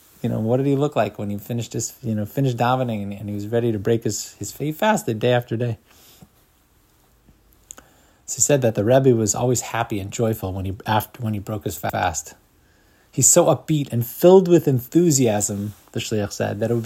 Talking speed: 215 wpm